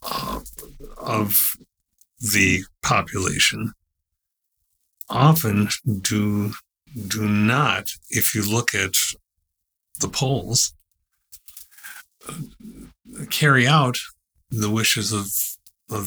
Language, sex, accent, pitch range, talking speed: English, male, American, 100-130 Hz, 80 wpm